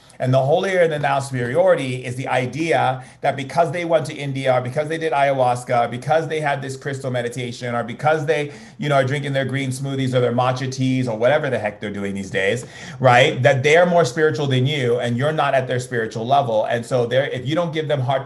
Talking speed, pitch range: 235 wpm, 120-145 Hz